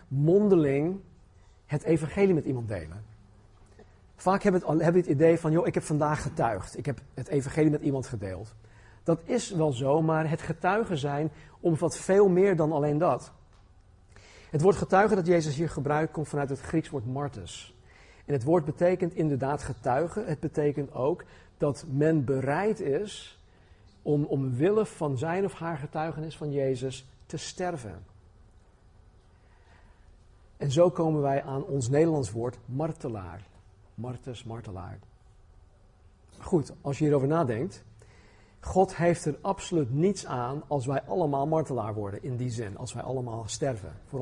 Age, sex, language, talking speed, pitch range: 50-69, male, Dutch, 150 wpm, 105-160 Hz